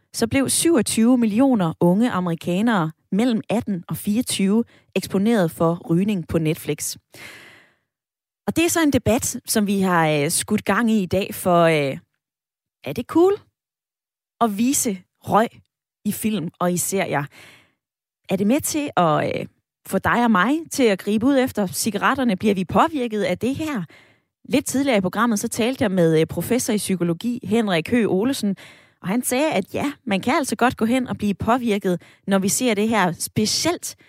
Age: 20-39